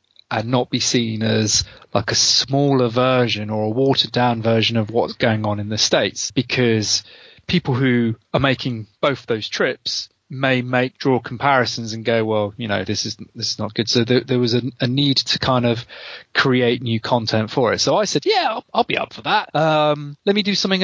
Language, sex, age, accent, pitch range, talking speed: English, male, 30-49, British, 110-135 Hz, 215 wpm